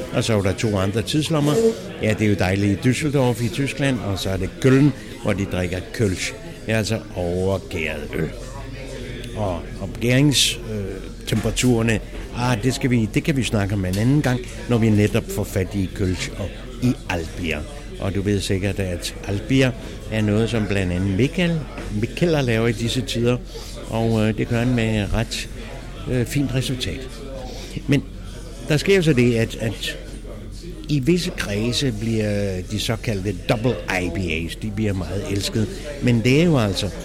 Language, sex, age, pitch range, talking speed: English, male, 60-79, 100-125 Hz, 170 wpm